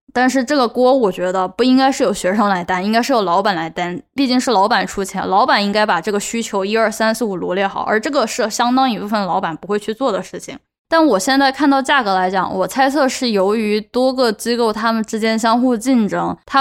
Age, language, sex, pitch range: 10-29, Chinese, female, 200-260 Hz